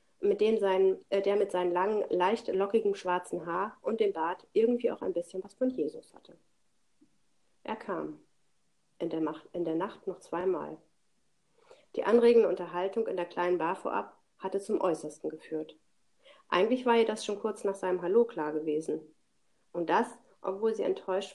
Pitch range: 170-210 Hz